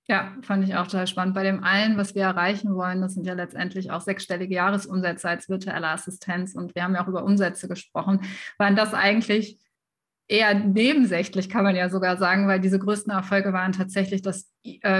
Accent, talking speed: German, 195 wpm